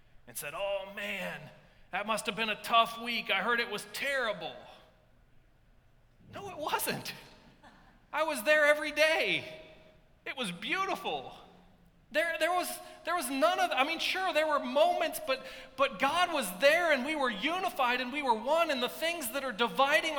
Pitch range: 225-310 Hz